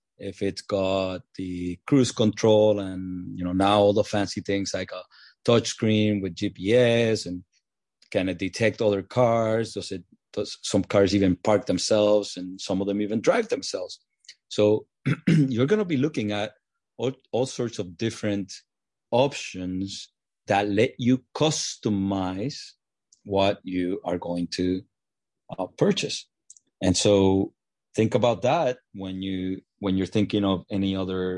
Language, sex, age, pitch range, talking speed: English, male, 30-49, 90-110 Hz, 150 wpm